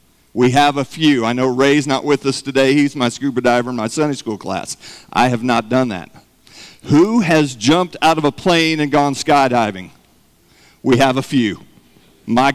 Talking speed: 190 wpm